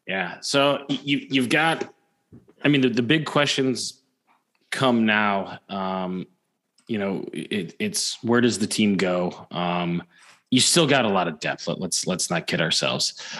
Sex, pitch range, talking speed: male, 100-130 Hz, 140 wpm